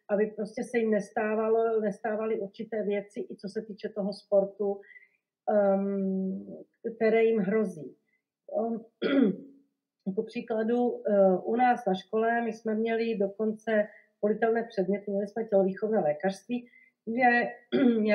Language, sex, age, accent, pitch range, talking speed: Czech, female, 40-59, native, 200-245 Hz, 120 wpm